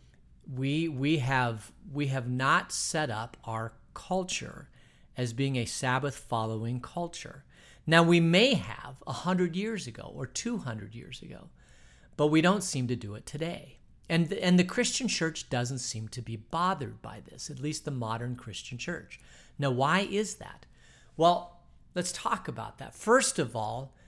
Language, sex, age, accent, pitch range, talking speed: English, male, 50-69, American, 125-180 Hz, 160 wpm